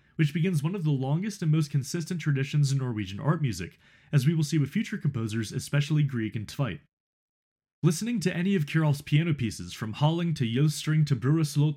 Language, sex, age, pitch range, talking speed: English, male, 20-39, 125-160 Hz, 195 wpm